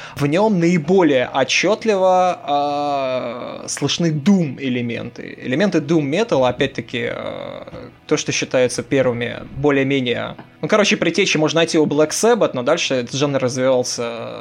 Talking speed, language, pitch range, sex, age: 125 wpm, Russian, 125-155 Hz, male, 20-39